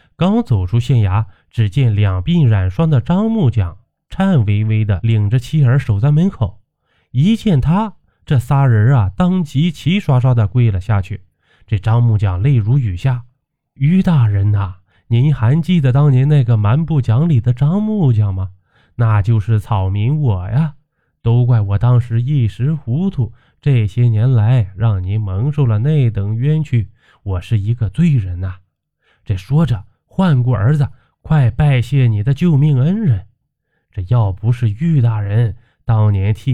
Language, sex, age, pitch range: Chinese, male, 20-39, 110-145 Hz